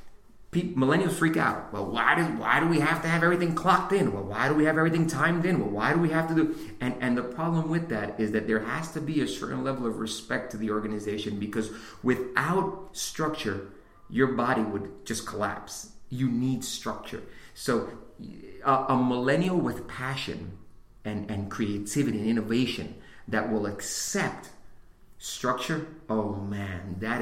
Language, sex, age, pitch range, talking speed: English, male, 30-49, 105-140 Hz, 170 wpm